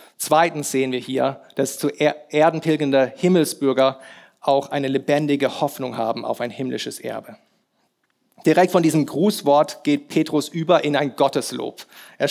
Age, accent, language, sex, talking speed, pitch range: 40-59, German, German, male, 135 wpm, 140-160 Hz